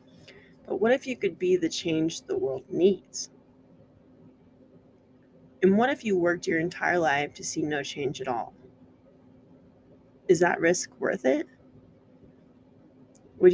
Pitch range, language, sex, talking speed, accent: 160-195 Hz, English, female, 135 wpm, American